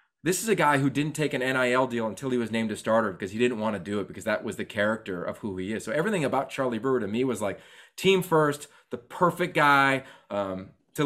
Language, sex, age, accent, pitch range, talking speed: English, male, 30-49, American, 115-155 Hz, 260 wpm